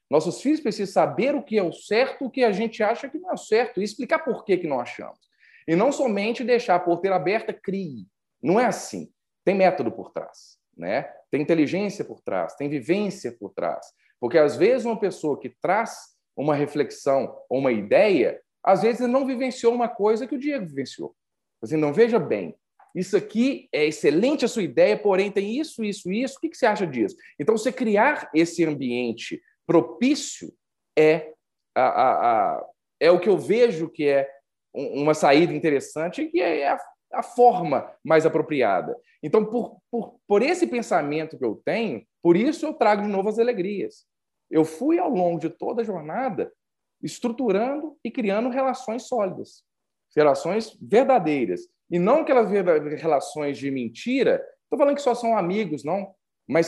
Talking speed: 175 wpm